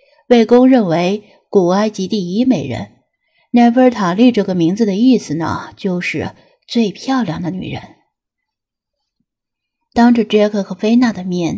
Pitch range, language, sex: 185-255 Hz, Chinese, female